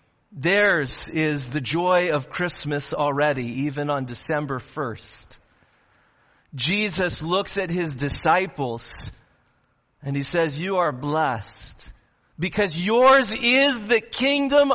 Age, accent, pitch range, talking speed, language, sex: 40-59, American, 130-200 Hz, 110 wpm, English, male